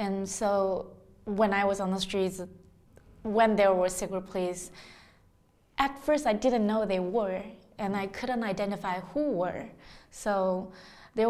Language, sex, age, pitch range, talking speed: English, female, 20-39, 195-245 Hz, 150 wpm